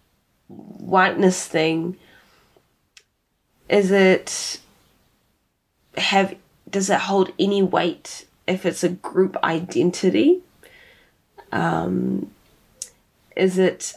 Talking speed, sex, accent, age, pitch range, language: 75 wpm, female, Australian, 10-29, 175-200 Hz, English